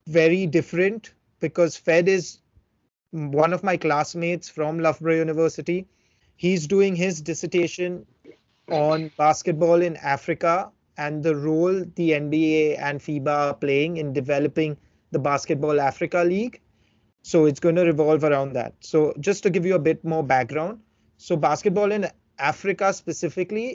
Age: 30-49